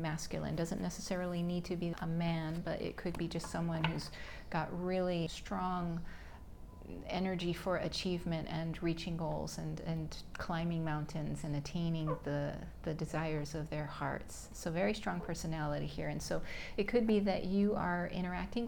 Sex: female